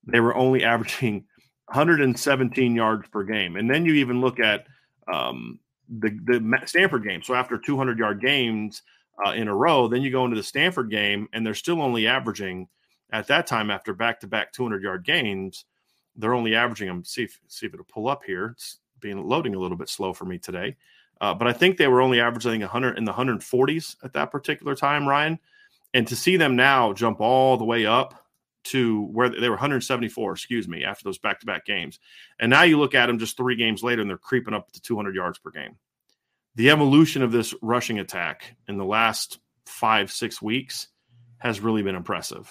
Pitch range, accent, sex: 110-130 Hz, American, male